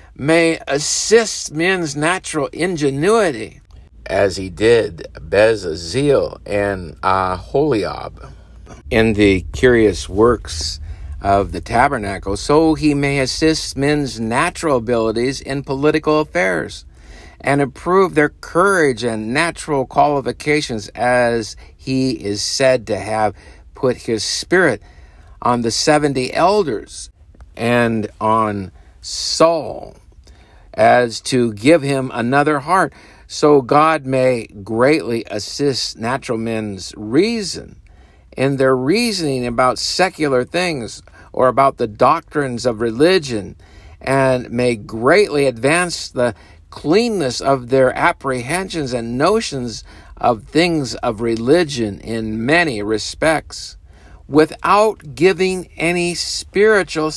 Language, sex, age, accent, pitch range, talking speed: English, male, 50-69, American, 100-150 Hz, 105 wpm